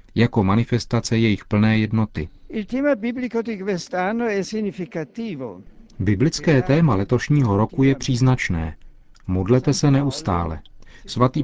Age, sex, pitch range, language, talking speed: 40-59, male, 100-125 Hz, Czech, 80 wpm